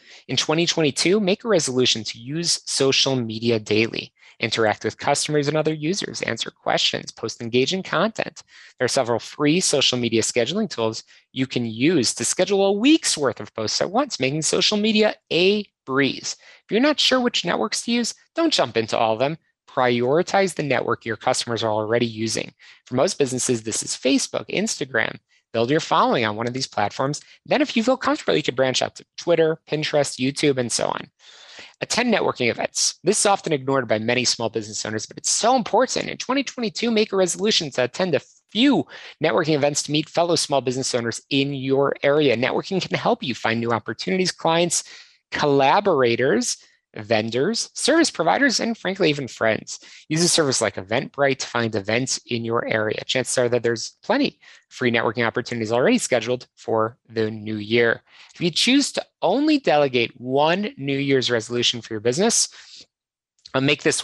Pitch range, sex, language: 120-185 Hz, male, English